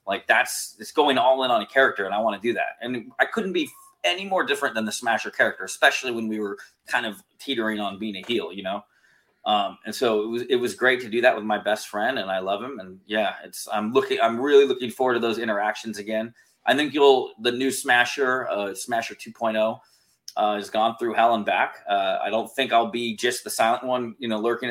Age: 20-39